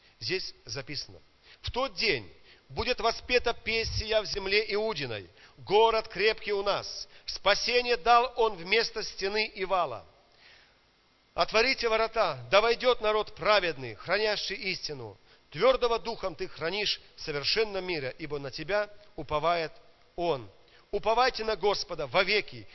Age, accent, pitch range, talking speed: 40-59, native, 130-195 Hz, 120 wpm